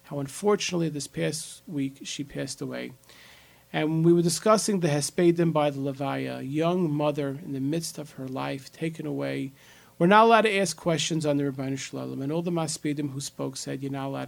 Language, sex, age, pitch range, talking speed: English, male, 40-59, 140-170 Hz, 200 wpm